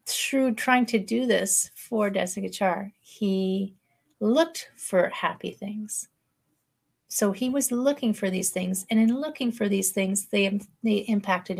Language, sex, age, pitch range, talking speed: English, female, 40-59, 180-215 Hz, 145 wpm